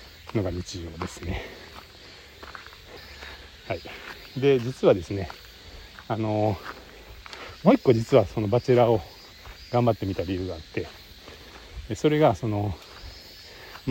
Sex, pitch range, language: male, 90-125 Hz, Japanese